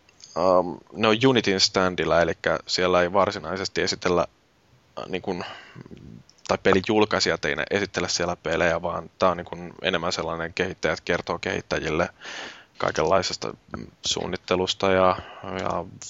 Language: Finnish